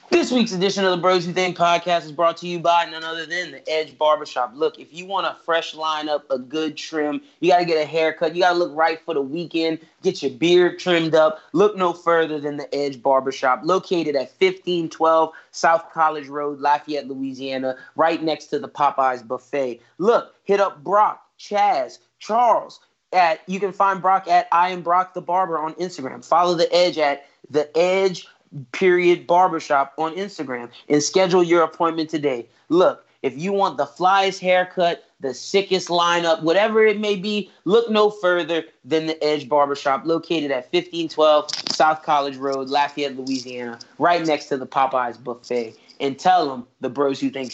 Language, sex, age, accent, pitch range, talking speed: English, male, 30-49, American, 145-180 Hz, 180 wpm